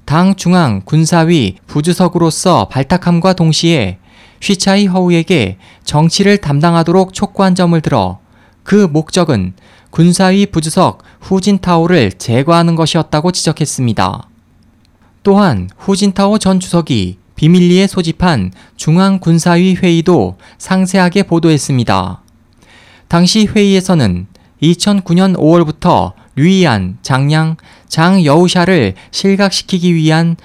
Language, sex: Korean, male